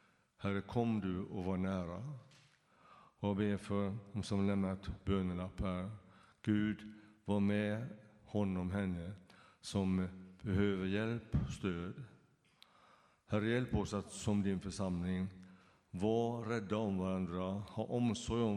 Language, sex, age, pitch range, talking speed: Swedish, male, 60-79, 95-110 Hz, 120 wpm